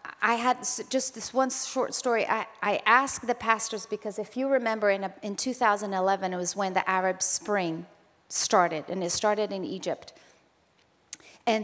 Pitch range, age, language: 195-240 Hz, 40-59, English